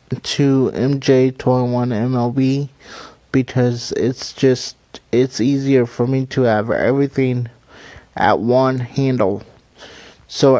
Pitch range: 125-140 Hz